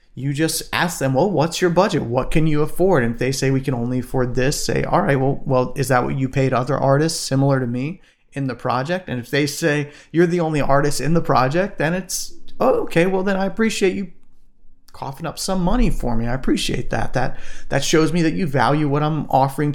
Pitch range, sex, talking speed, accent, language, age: 130-165 Hz, male, 235 wpm, American, English, 30-49